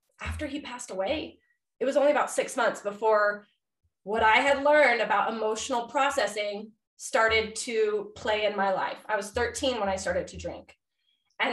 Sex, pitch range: female, 215-280 Hz